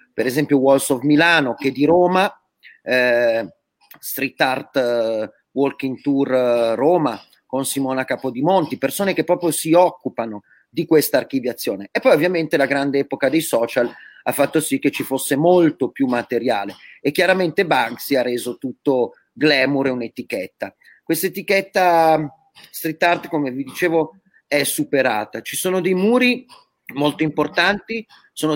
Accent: native